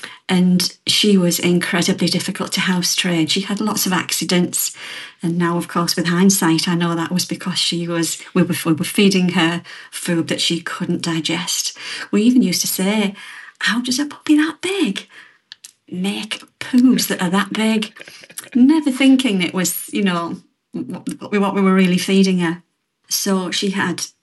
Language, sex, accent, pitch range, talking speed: English, female, British, 170-200 Hz, 165 wpm